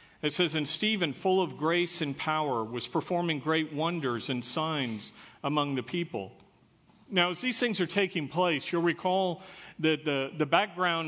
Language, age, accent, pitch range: English, 50-69, American, 140-170 Hz